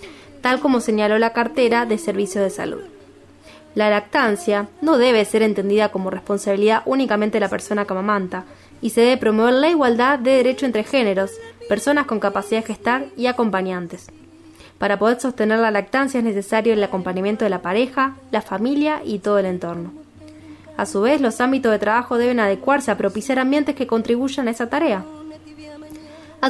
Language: Spanish